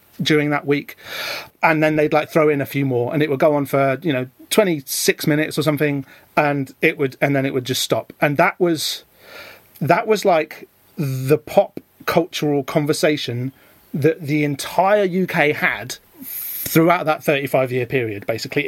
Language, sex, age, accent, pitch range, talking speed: English, male, 30-49, British, 135-165 Hz, 175 wpm